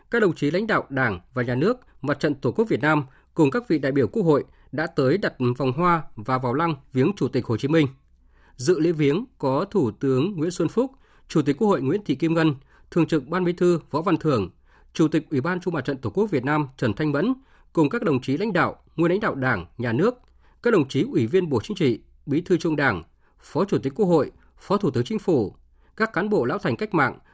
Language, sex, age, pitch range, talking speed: Vietnamese, male, 20-39, 125-175 Hz, 255 wpm